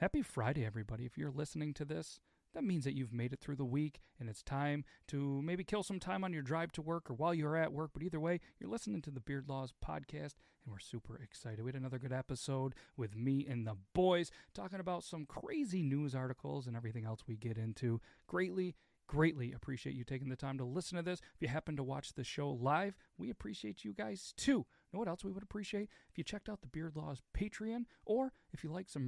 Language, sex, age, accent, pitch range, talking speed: English, male, 40-59, American, 125-180 Hz, 235 wpm